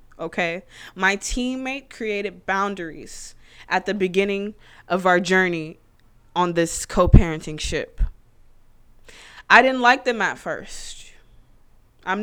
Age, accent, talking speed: 20-39, American, 110 wpm